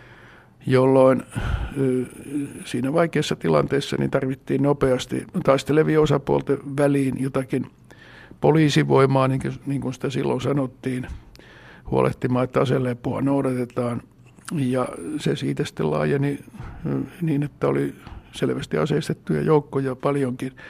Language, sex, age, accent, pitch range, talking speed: Finnish, male, 60-79, native, 120-135 Hz, 95 wpm